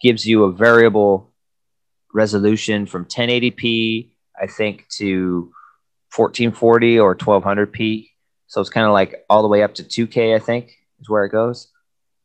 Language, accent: English, American